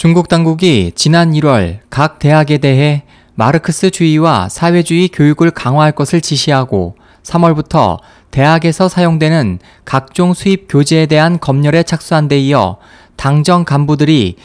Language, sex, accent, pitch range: Korean, male, native, 130-175 Hz